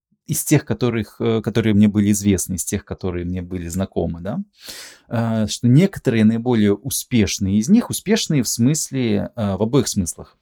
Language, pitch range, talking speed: Russian, 90-120 Hz, 150 wpm